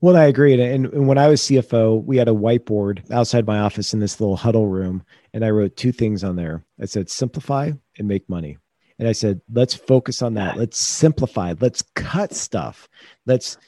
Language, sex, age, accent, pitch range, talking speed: English, male, 40-59, American, 110-140 Hz, 205 wpm